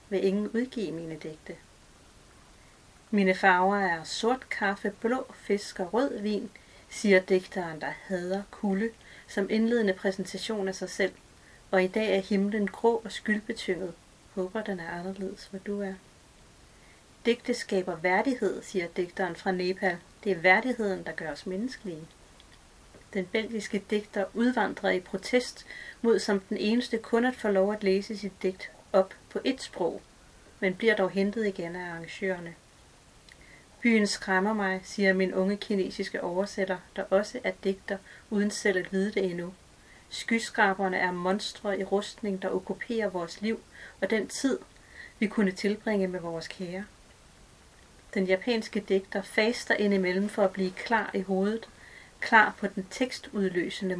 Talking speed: 150 wpm